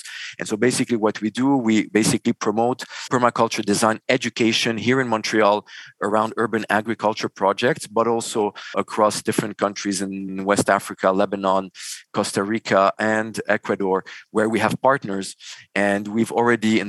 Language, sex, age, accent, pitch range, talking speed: English, male, 40-59, Canadian, 105-125 Hz, 140 wpm